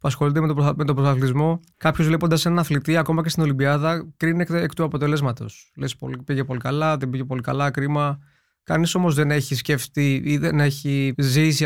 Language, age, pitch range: Greek, 20-39, 130-160 Hz